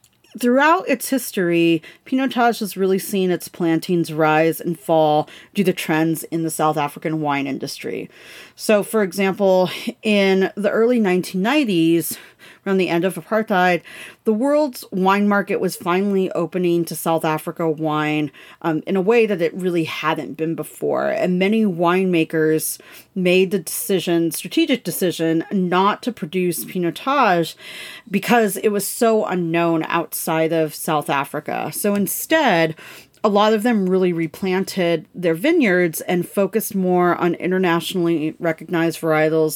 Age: 30-49